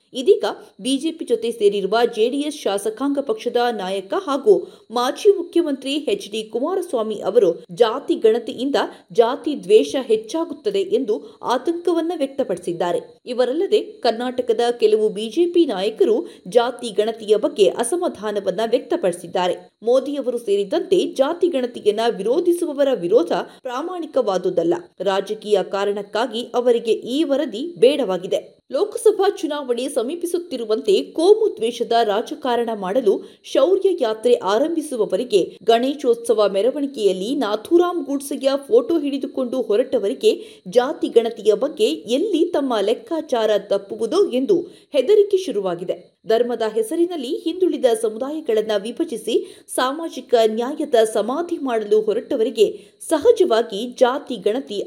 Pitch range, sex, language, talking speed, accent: 230-365 Hz, female, Kannada, 95 wpm, native